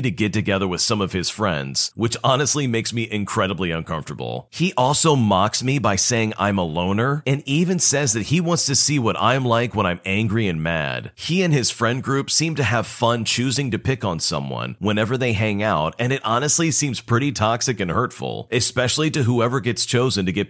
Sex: male